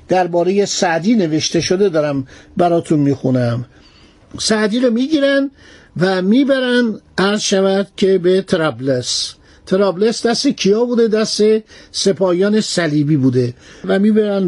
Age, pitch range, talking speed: 60-79, 160-215 Hz, 110 wpm